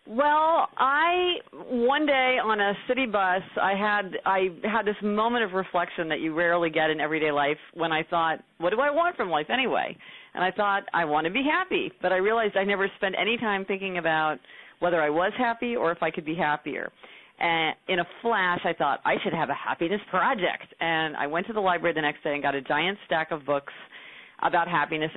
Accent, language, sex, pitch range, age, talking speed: American, English, female, 160-200 Hz, 40-59, 215 wpm